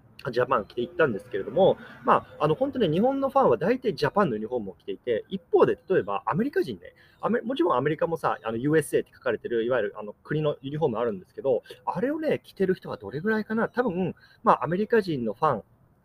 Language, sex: Japanese, male